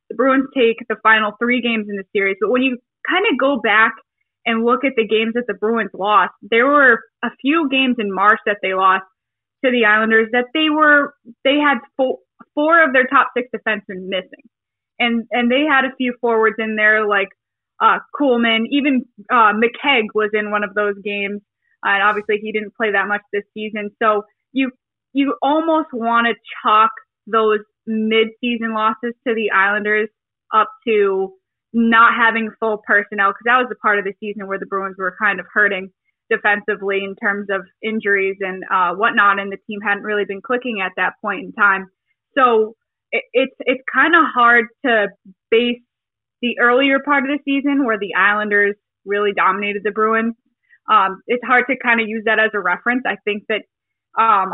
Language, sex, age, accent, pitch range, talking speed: English, female, 10-29, American, 205-245 Hz, 190 wpm